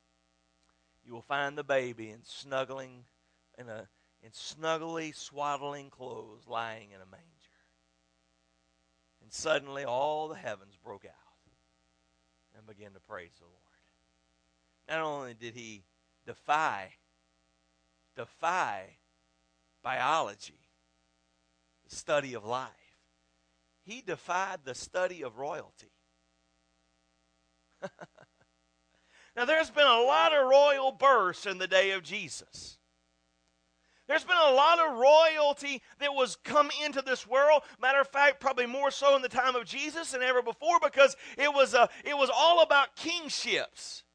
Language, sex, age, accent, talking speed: English, male, 50-69, American, 125 wpm